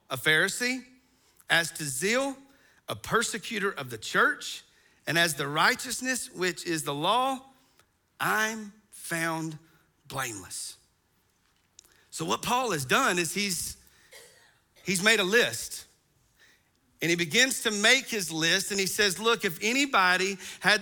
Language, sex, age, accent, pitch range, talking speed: English, male, 40-59, American, 165-235 Hz, 135 wpm